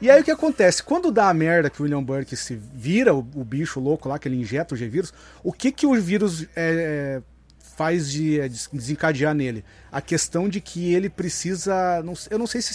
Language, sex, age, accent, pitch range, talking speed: Portuguese, male, 30-49, Brazilian, 130-175 Hz, 230 wpm